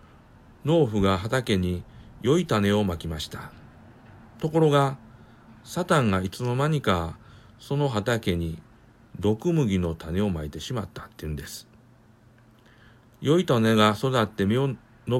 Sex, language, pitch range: male, Japanese, 105-125 Hz